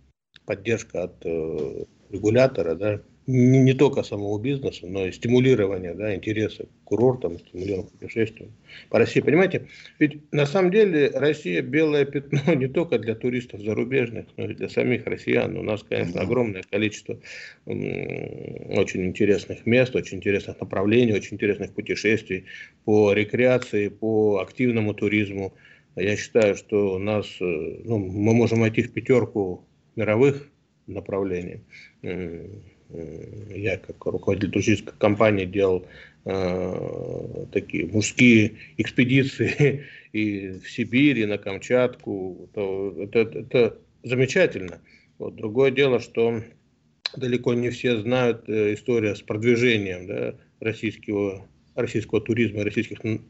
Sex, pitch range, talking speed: male, 100-125 Hz, 110 wpm